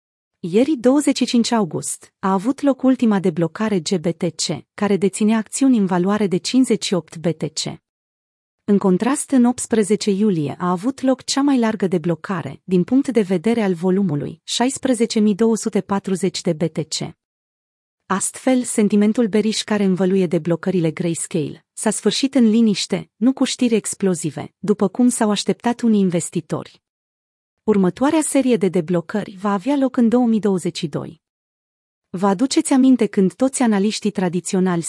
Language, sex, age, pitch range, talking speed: Romanian, female, 30-49, 175-230 Hz, 130 wpm